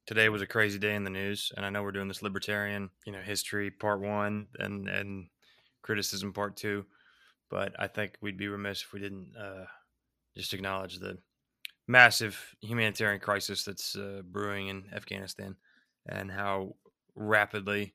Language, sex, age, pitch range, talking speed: English, male, 20-39, 100-105 Hz, 165 wpm